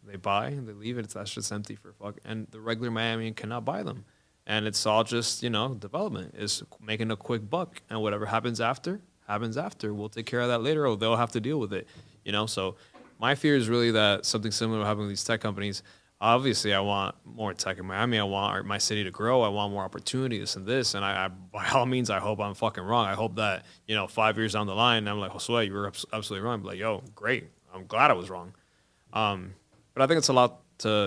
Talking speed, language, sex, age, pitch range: 250 wpm, English, male, 20-39, 100-115 Hz